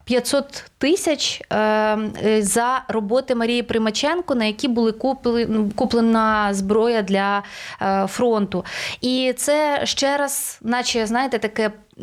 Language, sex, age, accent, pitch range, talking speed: Ukrainian, female, 20-39, native, 215-270 Hz, 95 wpm